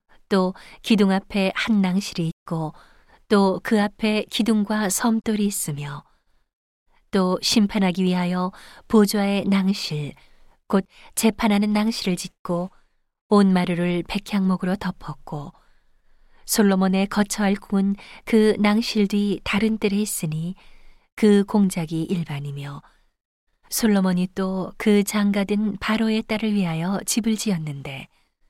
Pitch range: 180-210 Hz